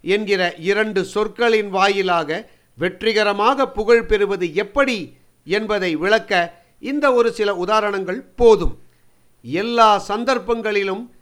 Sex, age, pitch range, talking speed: male, 50-69, 180-230 Hz, 90 wpm